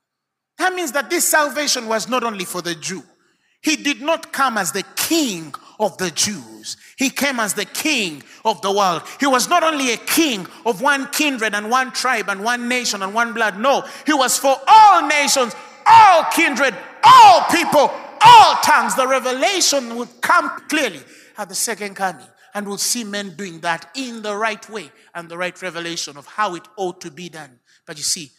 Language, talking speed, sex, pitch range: English, 195 wpm, male, 175-275 Hz